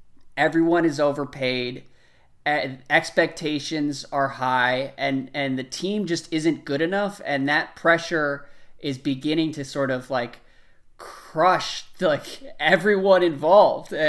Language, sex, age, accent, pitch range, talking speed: English, male, 20-39, American, 135-170 Hz, 125 wpm